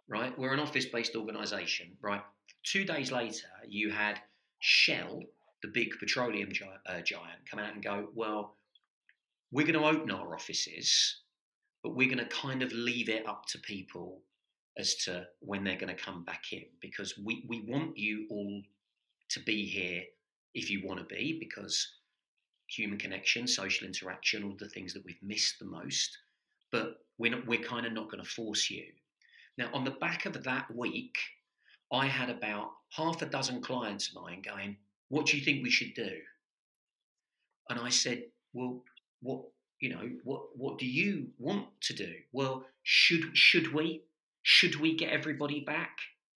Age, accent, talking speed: 40-59, British, 170 wpm